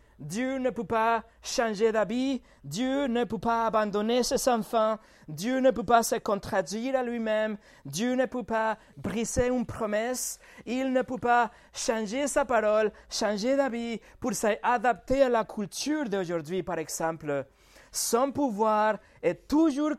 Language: French